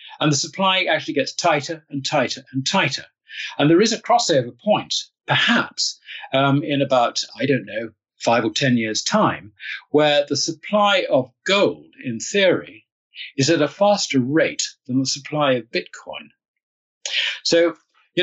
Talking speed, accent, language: 155 wpm, British, English